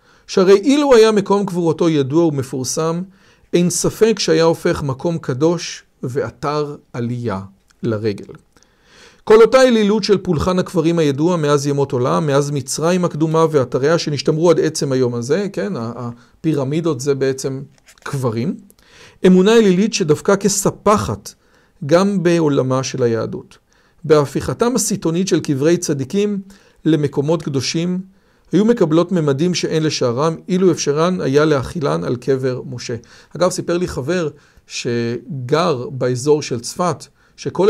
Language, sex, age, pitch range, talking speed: Hebrew, male, 50-69, 140-180 Hz, 120 wpm